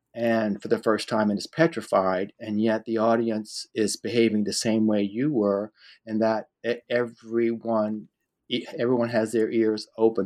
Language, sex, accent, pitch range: English, male, American, 110-135 Hz